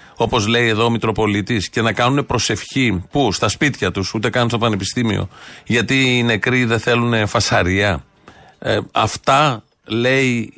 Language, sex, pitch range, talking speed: Greek, male, 110-130 Hz, 145 wpm